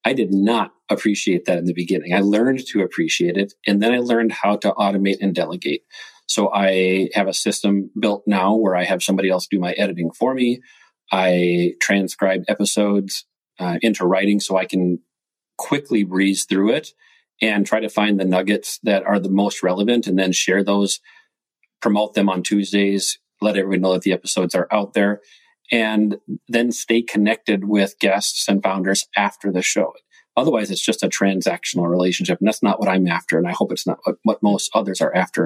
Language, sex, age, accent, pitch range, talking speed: English, male, 40-59, American, 95-110 Hz, 195 wpm